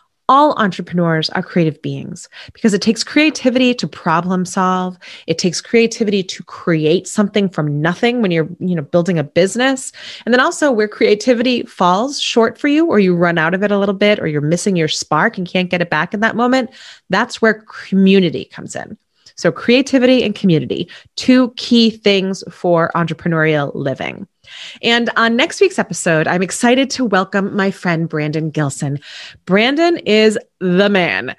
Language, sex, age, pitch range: English, female, 30-49, 165-230 Hz